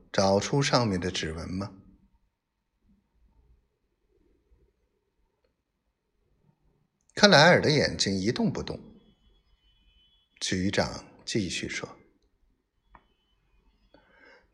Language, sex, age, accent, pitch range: Chinese, male, 50-69, native, 90-125 Hz